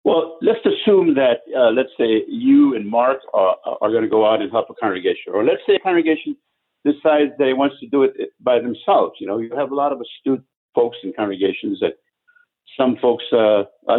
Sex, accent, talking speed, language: male, American, 210 wpm, English